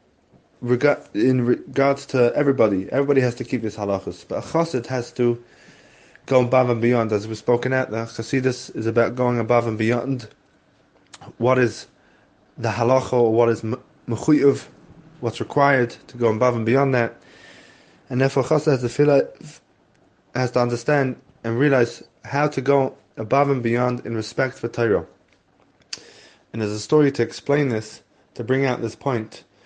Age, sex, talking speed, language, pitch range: 20-39, male, 170 wpm, English, 115-130 Hz